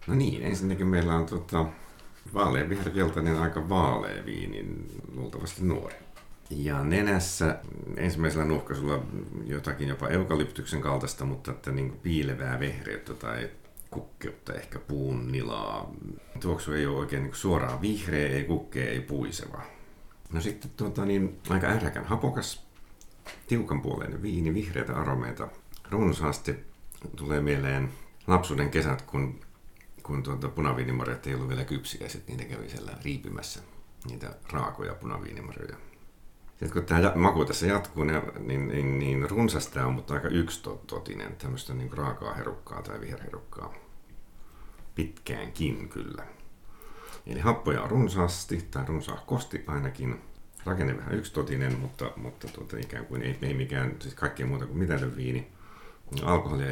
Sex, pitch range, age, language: male, 65-90 Hz, 50-69, Finnish